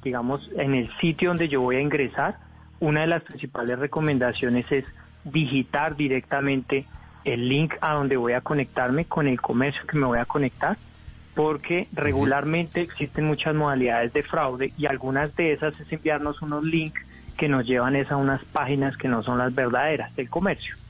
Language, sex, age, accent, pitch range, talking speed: Spanish, male, 30-49, Colombian, 130-160 Hz, 170 wpm